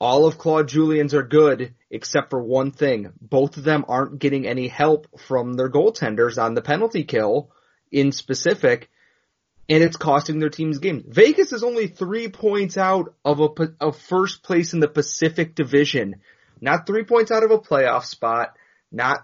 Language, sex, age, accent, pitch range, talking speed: English, male, 30-49, American, 135-175 Hz, 175 wpm